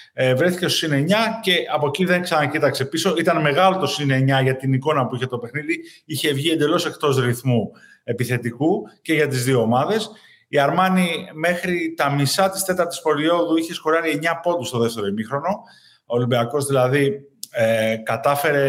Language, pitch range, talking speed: Greek, 120-160 Hz, 165 wpm